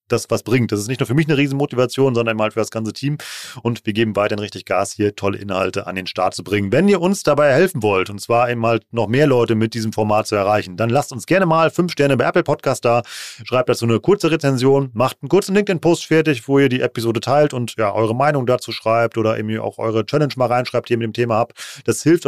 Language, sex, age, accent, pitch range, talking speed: German, male, 30-49, German, 115-145 Hz, 260 wpm